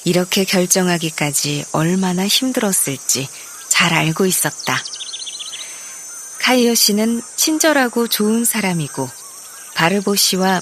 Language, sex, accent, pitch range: Korean, female, native, 160-250 Hz